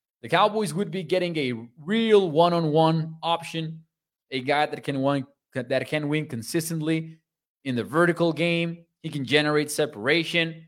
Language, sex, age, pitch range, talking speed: English, male, 20-39, 130-170 Hz, 130 wpm